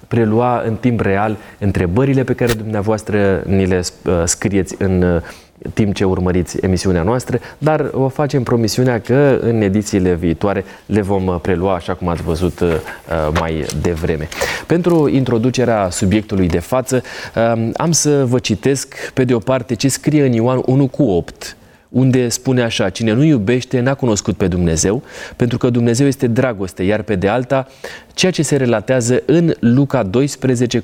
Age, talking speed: 30-49, 155 wpm